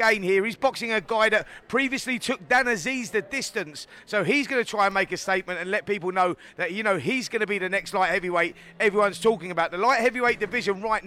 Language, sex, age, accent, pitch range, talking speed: English, male, 30-49, British, 195-230 Hz, 245 wpm